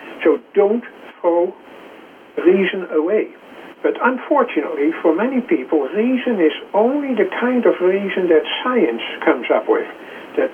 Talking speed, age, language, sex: 130 wpm, 60-79, English, male